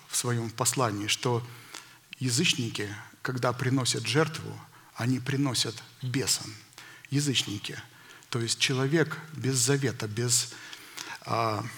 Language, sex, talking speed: Russian, male, 95 wpm